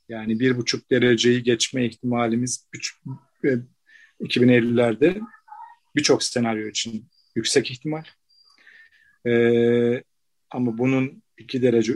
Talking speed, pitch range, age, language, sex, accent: 80 wpm, 120-155 Hz, 40-59, Turkish, male, native